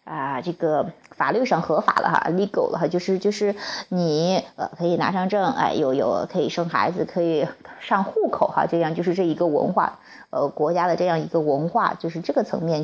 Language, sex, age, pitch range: Chinese, female, 20-39, 170-210 Hz